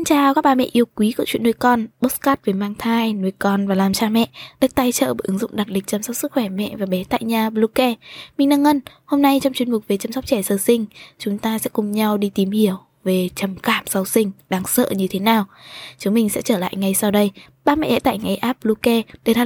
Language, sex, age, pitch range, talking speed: Vietnamese, female, 10-29, 200-250 Hz, 275 wpm